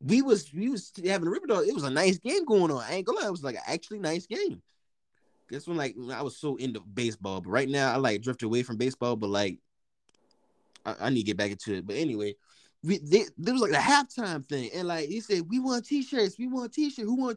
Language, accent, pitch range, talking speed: English, American, 190-260 Hz, 260 wpm